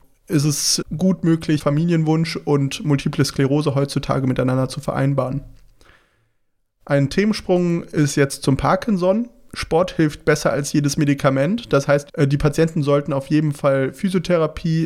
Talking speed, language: 135 wpm, German